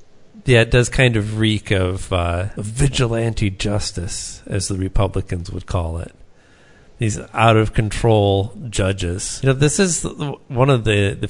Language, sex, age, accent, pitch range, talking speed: English, male, 40-59, American, 95-115 Hz, 155 wpm